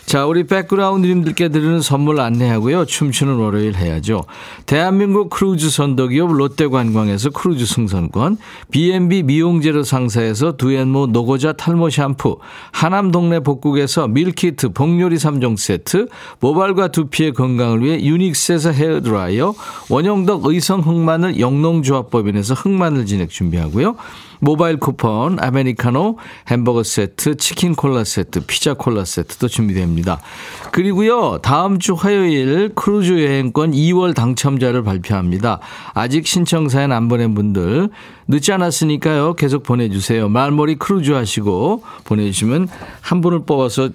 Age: 50-69